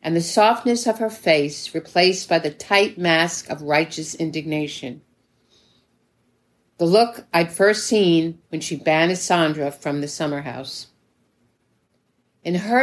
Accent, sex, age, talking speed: American, female, 50-69, 135 wpm